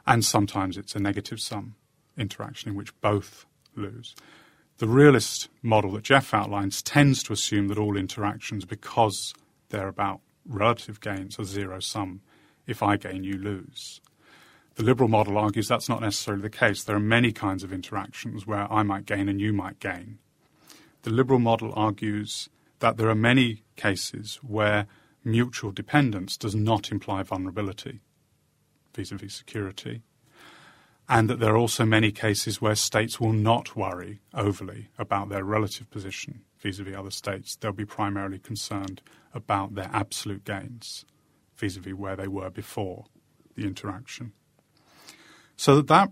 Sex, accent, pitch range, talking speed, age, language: male, British, 100-120 Hz, 150 wpm, 30-49, English